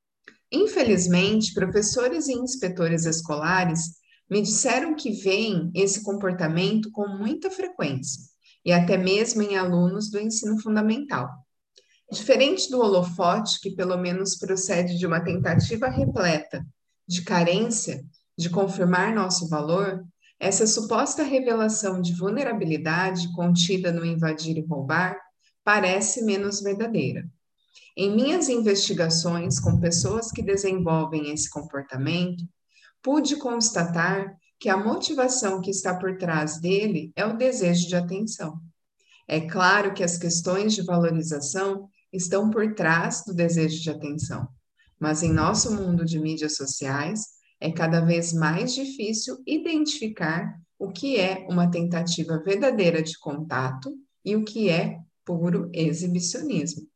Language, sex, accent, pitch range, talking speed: Portuguese, female, Brazilian, 165-210 Hz, 125 wpm